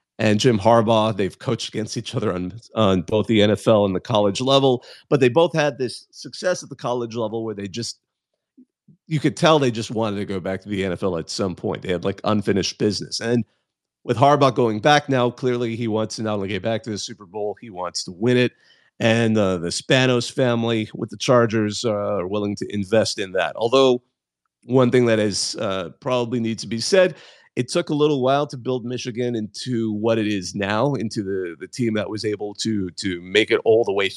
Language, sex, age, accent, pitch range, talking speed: English, male, 40-59, American, 105-125 Hz, 220 wpm